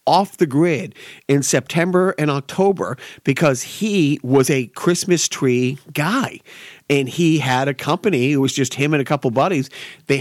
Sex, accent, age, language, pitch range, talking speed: male, American, 40-59, English, 130-165 Hz, 165 wpm